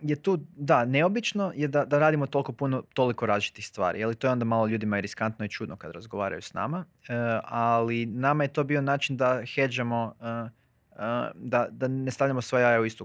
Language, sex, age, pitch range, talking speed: Croatian, male, 20-39, 110-130 Hz, 210 wpm